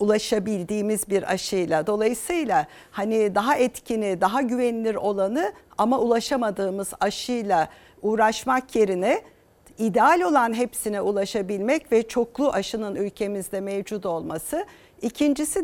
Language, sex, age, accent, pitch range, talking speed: Turkish, female, 50-69, native, 205-250 Hz, 100 wpm